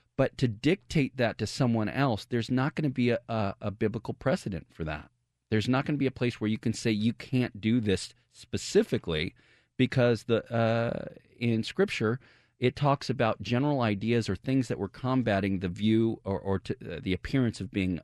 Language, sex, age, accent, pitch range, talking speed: English, male, 40-59, American, 90-120 Hz, 200 wpm